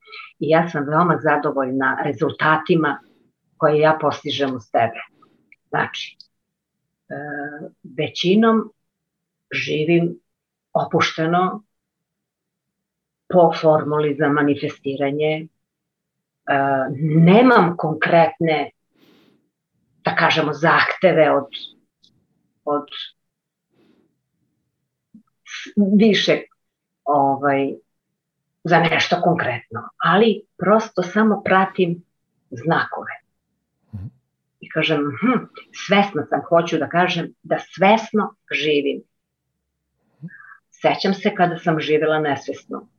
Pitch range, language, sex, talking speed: 150-180 Hz, Croatian, female, 75 wpm